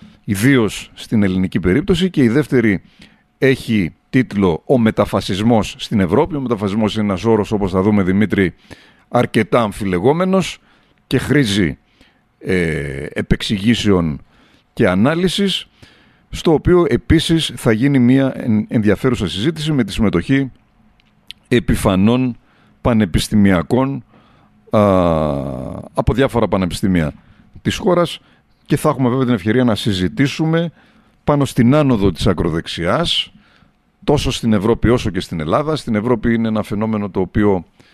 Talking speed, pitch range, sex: 120 wpm, 100-125 Hz, male